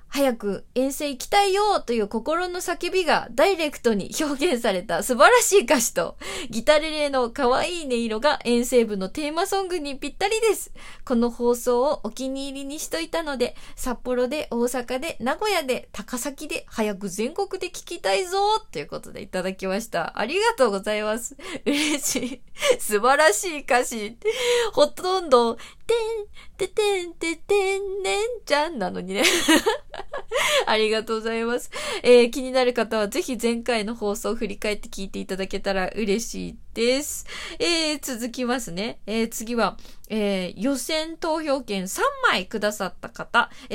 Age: 20-39